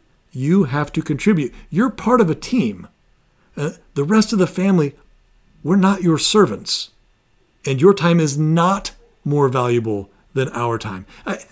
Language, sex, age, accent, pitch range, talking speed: English, male, 40-59, American, 125-170 Hz, 155 wpm